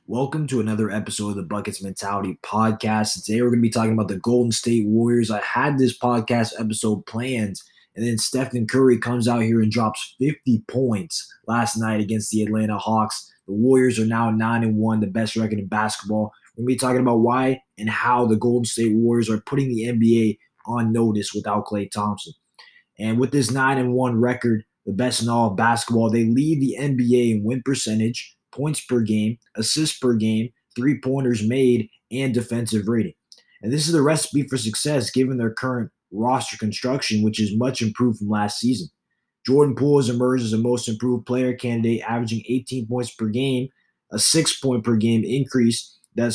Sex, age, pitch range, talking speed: male, 20-39, 110-130 Hz, 185 wpm